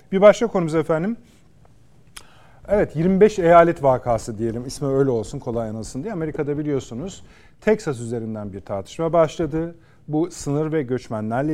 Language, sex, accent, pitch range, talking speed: Turkish, male, native, 125-160 Hz, 135 wpm